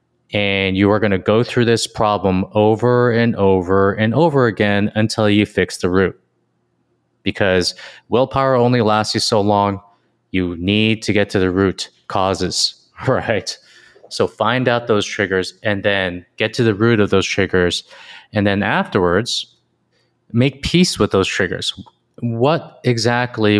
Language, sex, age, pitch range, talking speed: English, male, 20-39, 95-115 Hz, 155 wpm